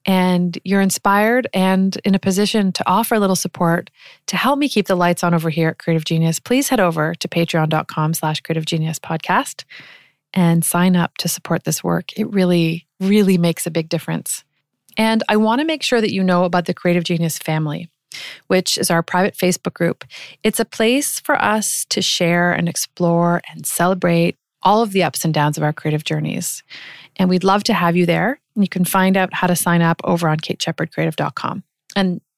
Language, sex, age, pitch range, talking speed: English, female, 30-49, 165-200 Hz, 195 wpm